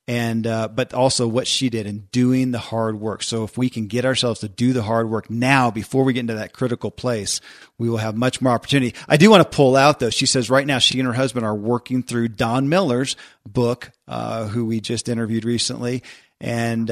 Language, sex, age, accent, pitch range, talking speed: English, male, 40-59, American, 110-125 Hz, 230 wpm